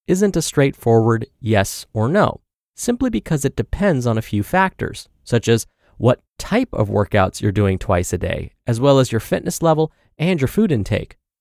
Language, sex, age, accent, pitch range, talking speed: English, male, 30-49, American, 105-155 Hz, 185 wpm